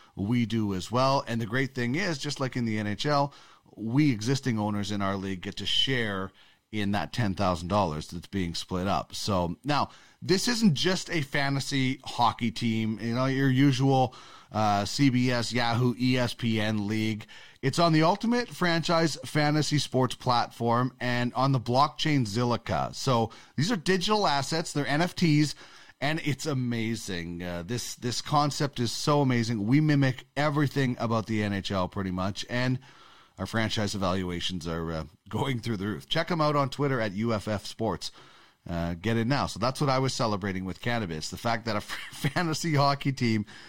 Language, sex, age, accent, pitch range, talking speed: English, male, 30-49, American, 100-140 Hz, 170 wpm